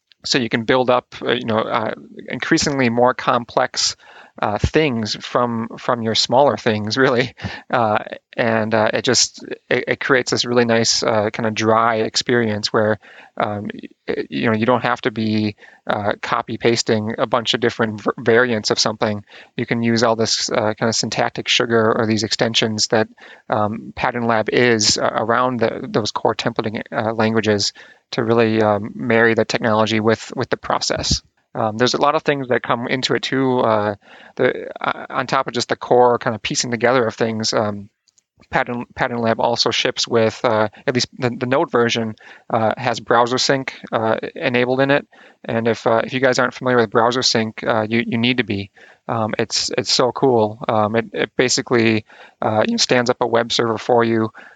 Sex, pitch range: male, 110-125 Hz